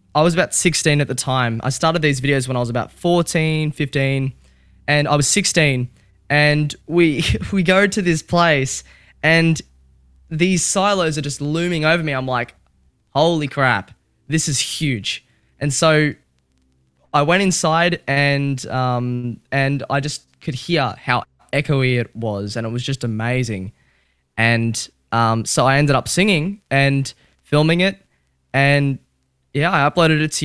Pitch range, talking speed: 115-155 Hz, 160 wpm